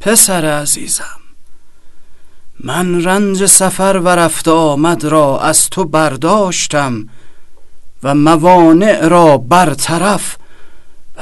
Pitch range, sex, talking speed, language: 160-225 Hz, male, 90 wpm, Persian